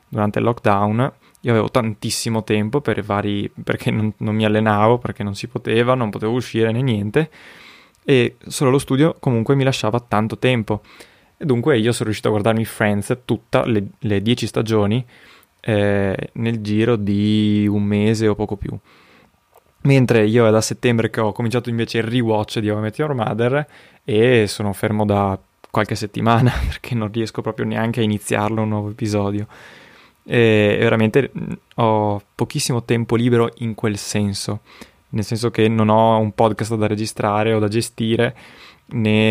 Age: 20-39